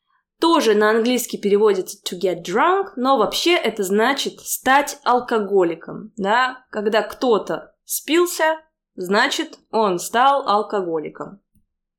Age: 20-39